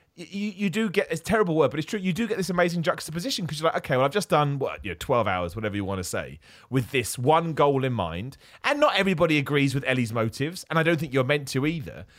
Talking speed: 275 wpm